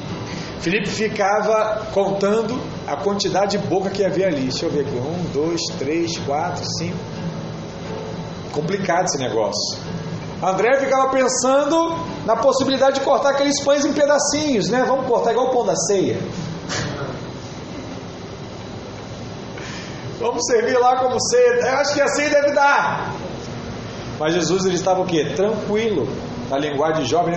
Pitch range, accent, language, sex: 155-245 Hz, Brazilian, Portuguese, male